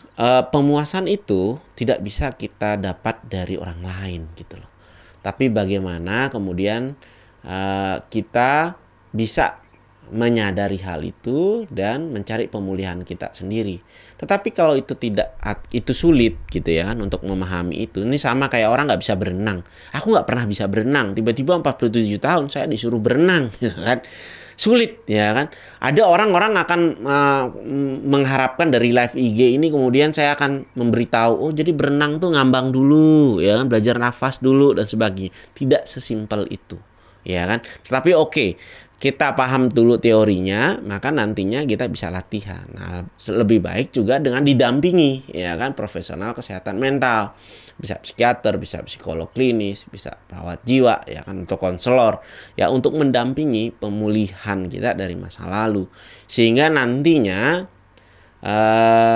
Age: 30-49